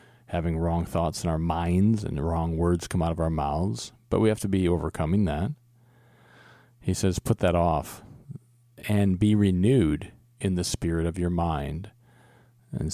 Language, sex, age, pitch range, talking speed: English, male, 40-59, 85-115 Hz, 170 wpm